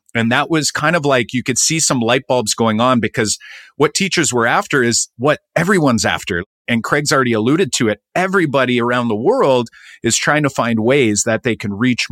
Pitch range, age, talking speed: 105-130 Hz, 40-59, 210 wpm